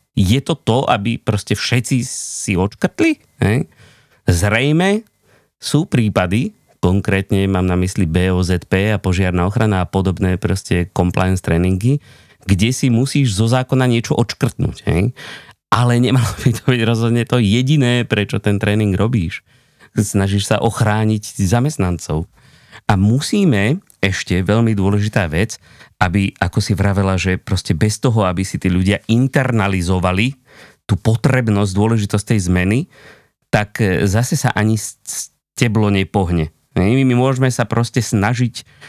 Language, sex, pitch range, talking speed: Slovak, male, 100-125 Hz, 125 wpm